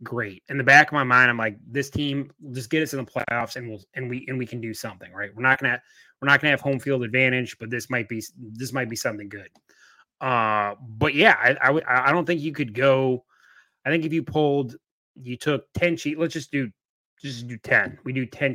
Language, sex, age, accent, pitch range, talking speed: English, male, 30-49, American, 110-135 Hz, 245 wpm